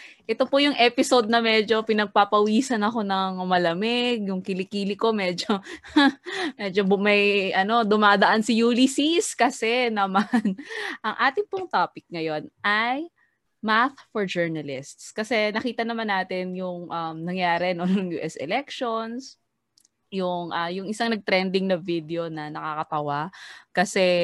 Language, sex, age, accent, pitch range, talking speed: Filipino, female, 20-39, native, 170-220 Hz, 130 wpm